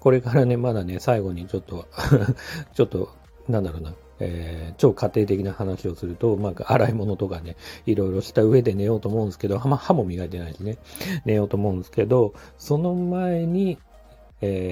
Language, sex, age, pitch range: Japanese, male, 40-59, 90-130 Hz